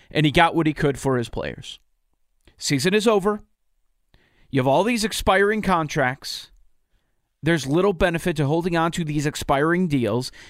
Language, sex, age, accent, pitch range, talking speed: English, male, 40-59, American, 140-195 Hz, 160 wpm